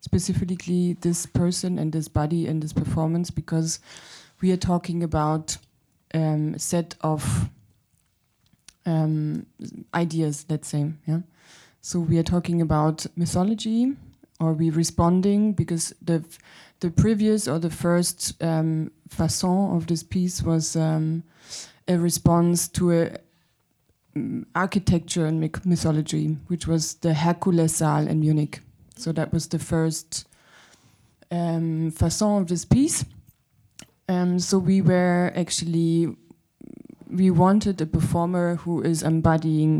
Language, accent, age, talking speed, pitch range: French, German, 20-39, 125 wpm, 160-180 Hz